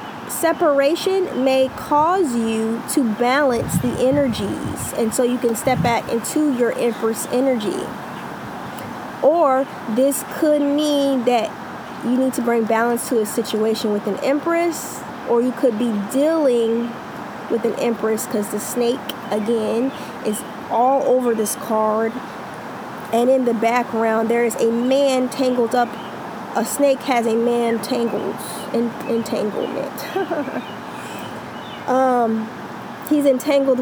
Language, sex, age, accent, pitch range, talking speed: English, female, 20-39, American, 225-270 Hz, 130 wpm